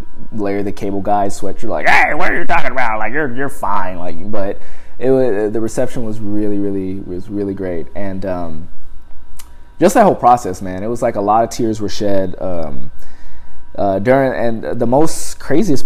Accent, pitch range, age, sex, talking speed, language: American, 90-105 Hz, 20-39, male, 195 wpm, English